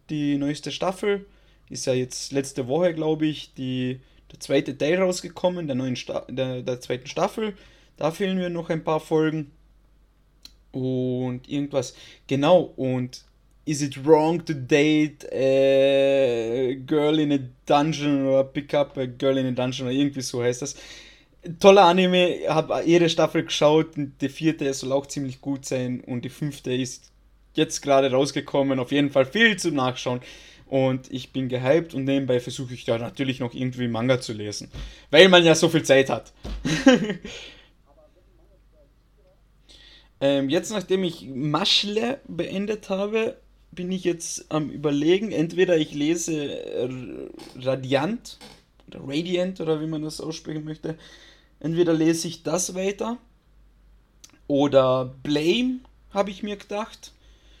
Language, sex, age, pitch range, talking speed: German, male, 20-39, 130-170 Hz, 145 wpm